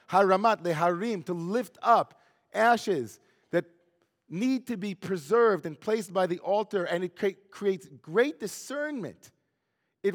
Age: 40-59